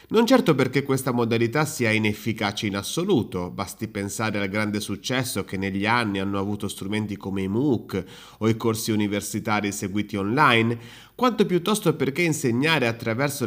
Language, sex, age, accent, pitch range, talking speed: Italian, male, 30-49, native, 105-145 Hz, 150 wpm